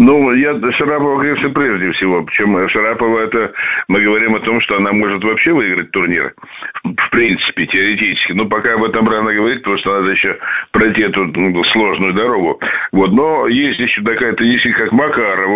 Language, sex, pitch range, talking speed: Russian, male, 95-115 Hz, 170 wpm